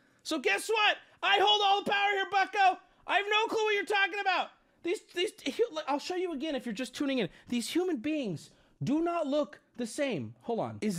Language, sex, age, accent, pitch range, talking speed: English, male, 30-49, American, 225-345 Hz, 220 wpm